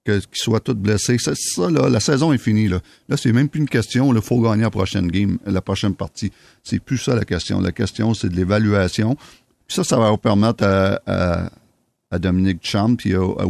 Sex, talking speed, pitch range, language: male, 225 wpm, 90-105 Hz, French